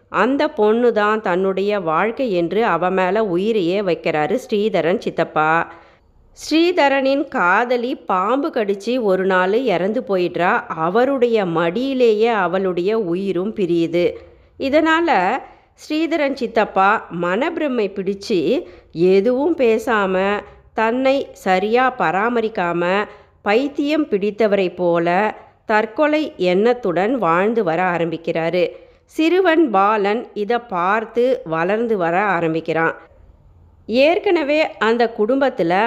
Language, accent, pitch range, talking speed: Tamil, native, 185-245 Hz, 85 wpm